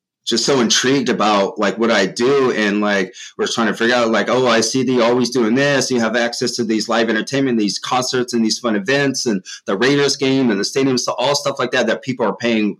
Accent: American